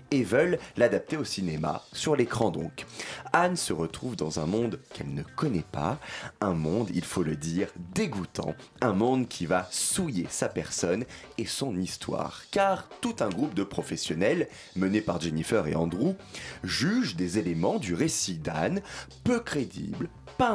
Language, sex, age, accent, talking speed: French, male, 30-49, French, 160 wpm